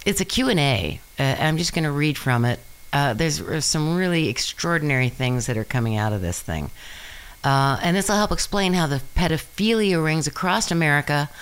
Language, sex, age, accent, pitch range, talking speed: English, female, 50-69, American, 130-185 Hz, 195 wpm